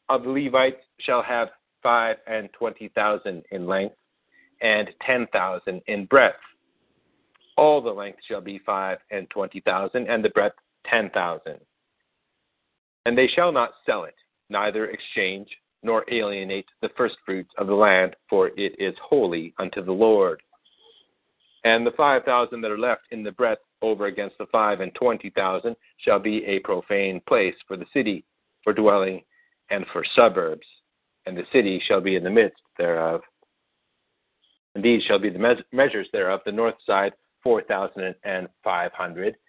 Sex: male